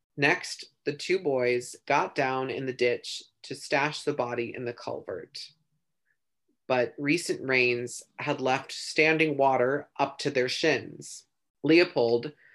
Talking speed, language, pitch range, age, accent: 135 wpm, English, 125-155 Hz, 30-49, American